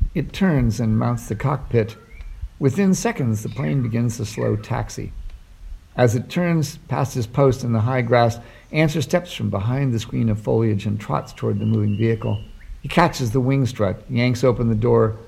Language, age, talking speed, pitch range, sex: English, 50-69, 185 wpm, 105-135 Hz, male